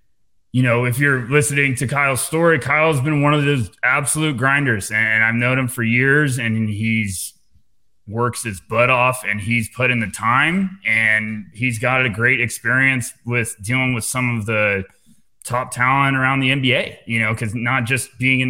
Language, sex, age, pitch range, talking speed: English, male, 20-39, 110-130 Hz, 185 wpm